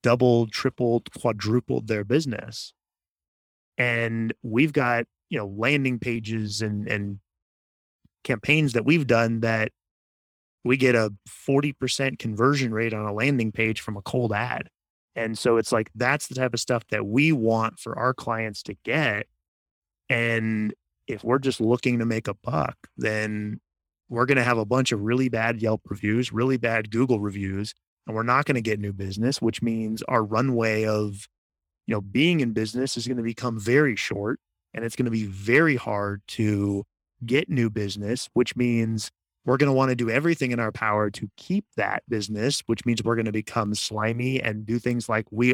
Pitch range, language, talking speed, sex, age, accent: 105-125 Hz, English, 185 wpm, male, 30-49, American